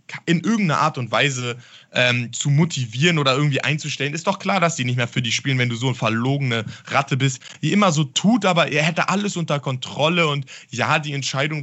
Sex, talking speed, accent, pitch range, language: male, 215 wpm, German, 135-185 Hz, German